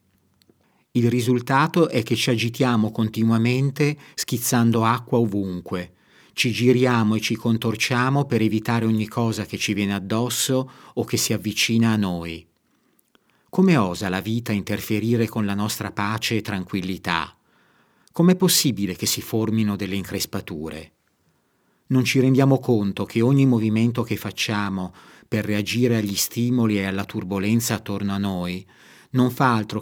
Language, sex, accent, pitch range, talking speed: Italian, male, native, 100-125 Hz, 140 wpm